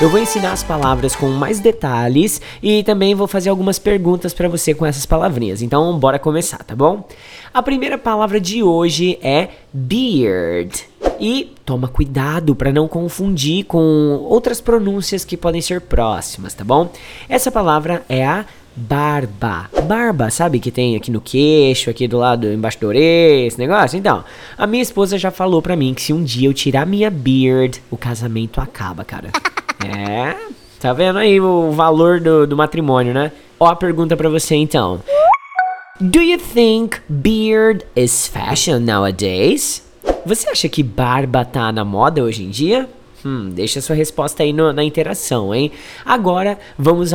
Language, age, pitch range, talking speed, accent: English, 20-39, 130-185 Hz, 165 wpm, Brazilian